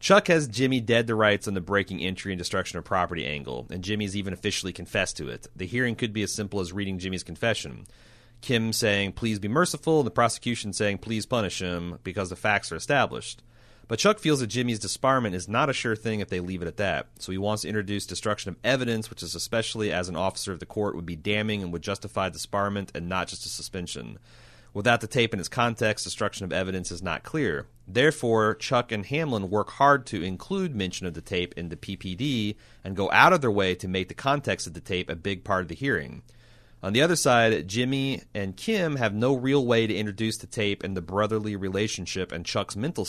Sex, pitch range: male, 95-120 Hz